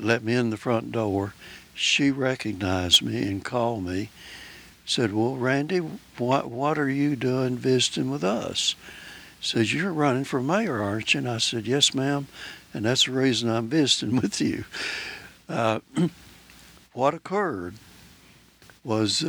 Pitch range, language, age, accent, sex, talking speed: 110-130 Hz, English, 60-79, American, male, 145 wpm